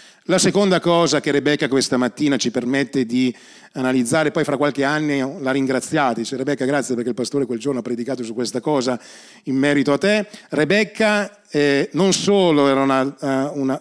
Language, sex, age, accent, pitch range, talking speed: Italian, male, 40-59, native, 145-195 Hz, 180 wpm